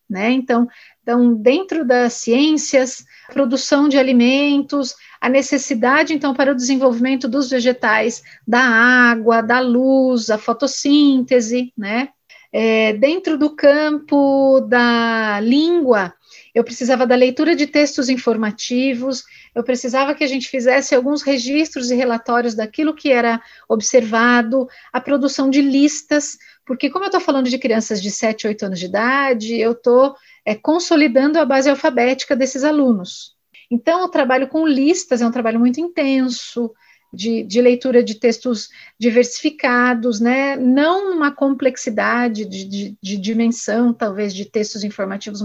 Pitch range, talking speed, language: 235-285 Hz, 135 wpm, Portuguese